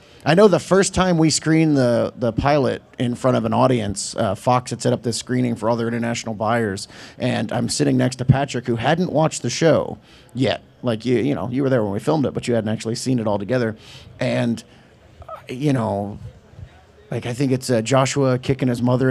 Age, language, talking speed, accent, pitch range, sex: 30-49, English, 220 wpm, American, 125-160 Hz, male